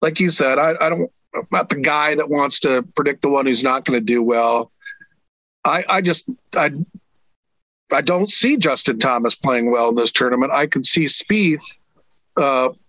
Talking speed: 195 wpm